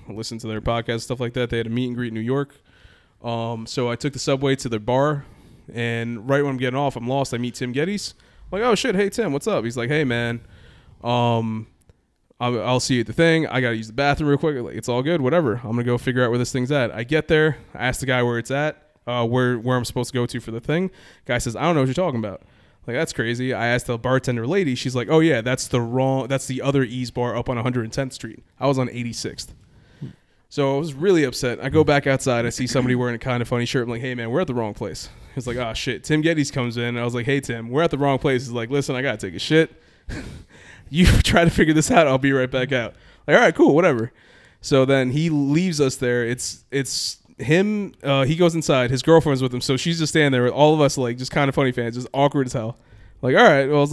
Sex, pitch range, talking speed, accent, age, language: male, 120-140 Hz, 280 wpm, American, 20-39, English